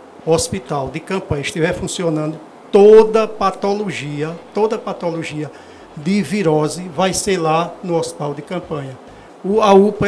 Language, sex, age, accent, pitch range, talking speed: Portuguese, male, 60-79, Brazilian, 160-200 Hz, 125 wpm